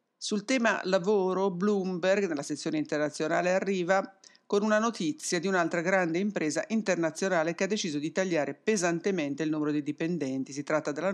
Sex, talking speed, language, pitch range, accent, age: female, 155 wpm, English, 150-195 Hz, Italian, 50-69